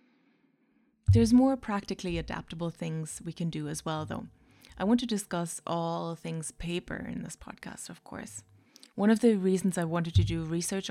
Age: 20-39